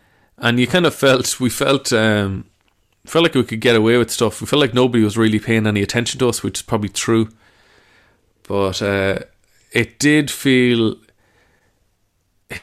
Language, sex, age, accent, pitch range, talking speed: English, male, 30-49, Irish, 105-125 Hz, 165 wpm